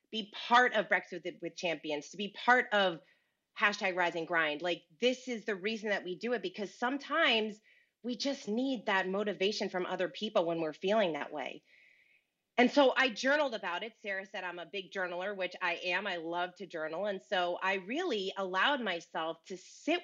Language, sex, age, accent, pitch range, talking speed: English, female, 30-49, American, 180-240 Hz, 190 wpm